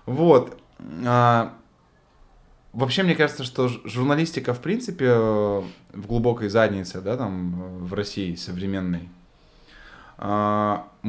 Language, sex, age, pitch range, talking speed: Russian, male, 20-39, 100-125 Hz, 95 wpm